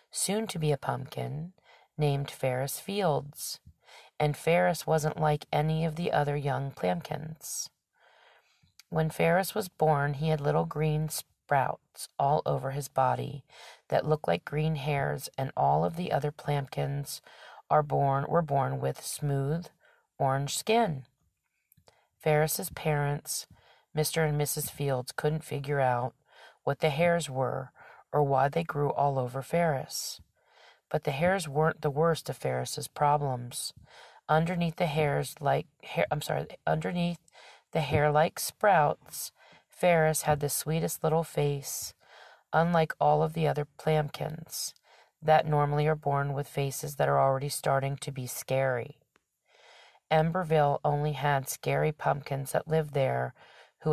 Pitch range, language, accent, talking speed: 140-160 Hz, English, American, 140 wpm